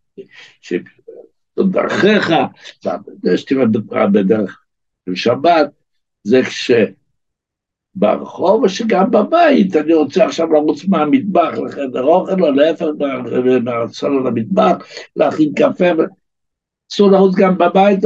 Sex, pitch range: male, 145-195 Hz